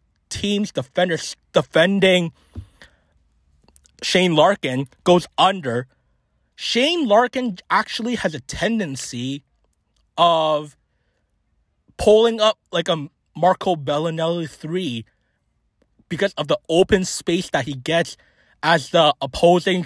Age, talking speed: 20-39, 95 wpm